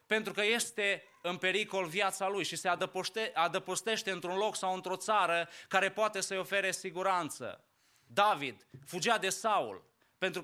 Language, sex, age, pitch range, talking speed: English, male, 20-39, 170-210 Hz, 150 wpm